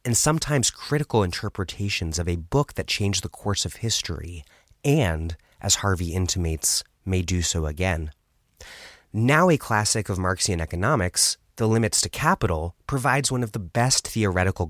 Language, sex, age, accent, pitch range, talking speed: English, male, 30-49, American, 85-115 Hz, 150 wpm